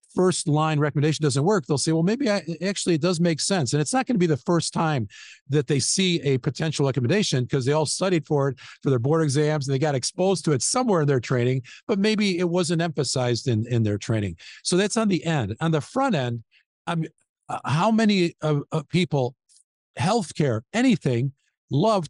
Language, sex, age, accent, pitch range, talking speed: English, male, 50-69, American, 130-170 Hz, 205 wpm